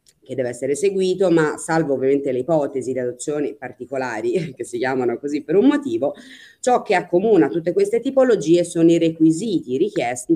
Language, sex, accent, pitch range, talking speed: Italian, female, native, 130-200 Hz, 170 wpm